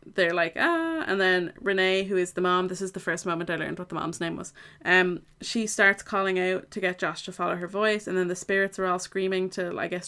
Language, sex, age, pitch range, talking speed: English, female, 20-39, 175-205 Hz, 260 wpm